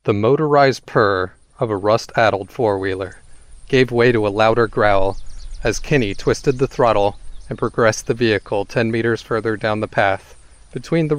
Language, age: English, 40-59